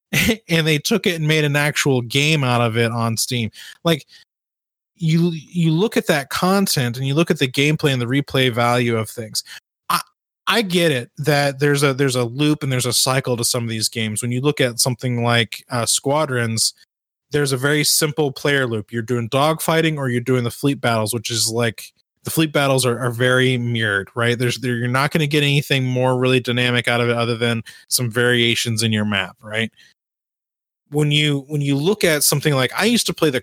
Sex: male